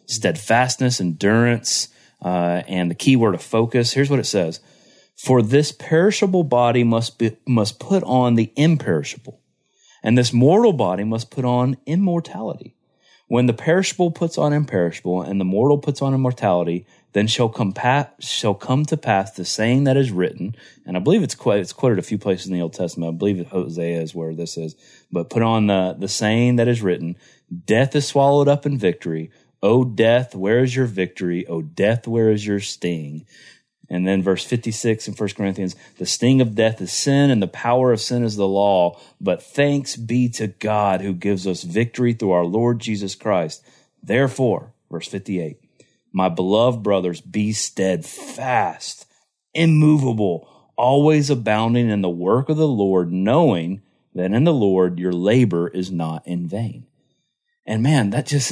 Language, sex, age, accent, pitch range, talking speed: English, male, 30-49, American, 95-130 Hz, 175 wpm